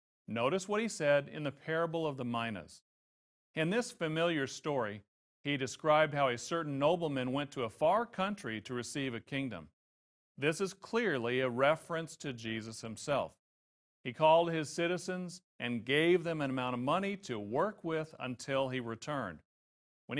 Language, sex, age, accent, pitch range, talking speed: English, male, 40-59, American, 125-170 Hz, 165 wpm